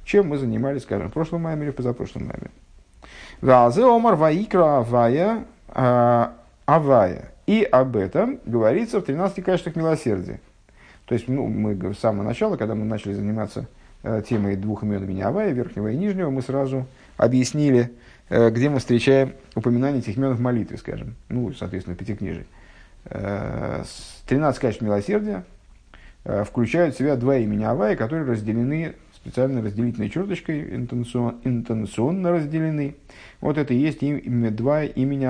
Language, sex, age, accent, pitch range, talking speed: Russian, male, 50-69, native, 115-150 Hz, 140 wpm